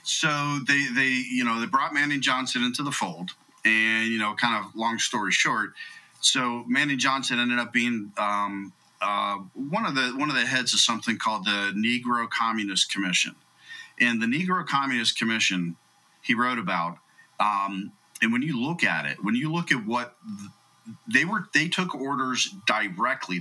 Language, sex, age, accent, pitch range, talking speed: English, male, 40-59, American, 110-150 Hz, 175 wpm